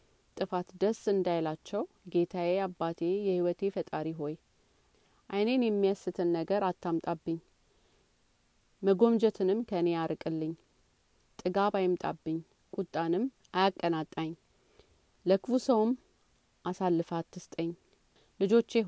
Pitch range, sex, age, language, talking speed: 170-205 Hz, female, 30-49, Amharic, 70 wpm